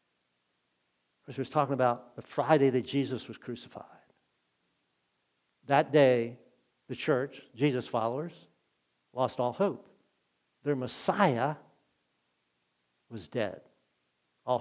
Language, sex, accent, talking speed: English, male, American, 100 wpm